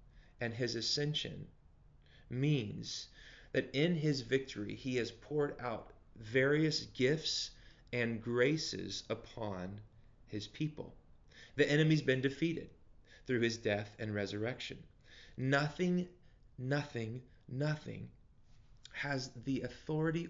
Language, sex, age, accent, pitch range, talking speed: English, male, 30-49, American, 110-140 Hz, 100 wpm